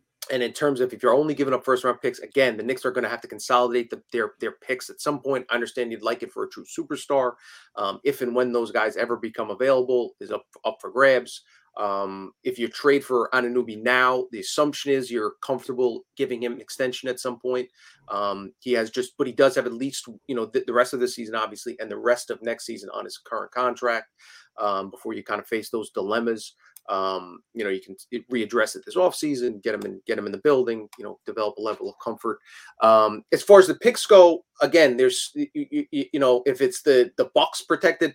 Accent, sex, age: American, male, 30-49